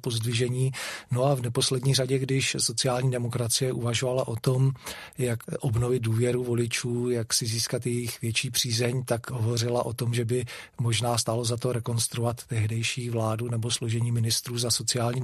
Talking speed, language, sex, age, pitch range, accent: 160 wpm, Czech, male, 40-59, 115-125 Hz, native